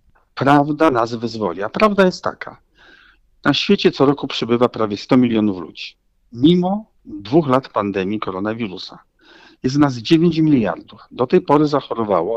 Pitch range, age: 115-175 Hz, 50-69